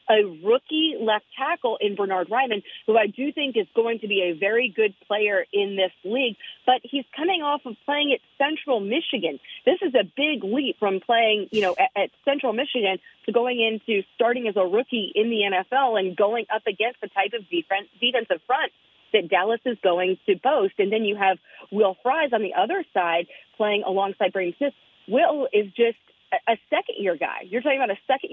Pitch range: 200-265 Hz